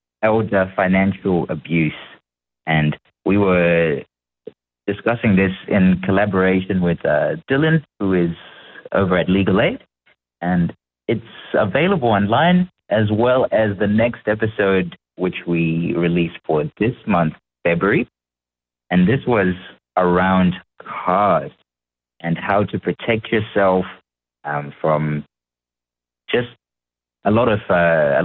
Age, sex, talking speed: 30-49, male, 115 wpm